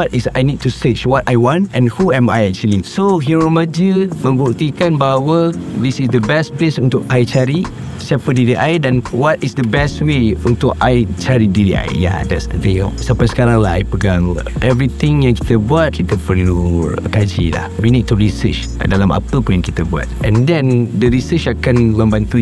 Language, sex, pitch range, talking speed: Malay, male, 105-135 Hz, 195 wpm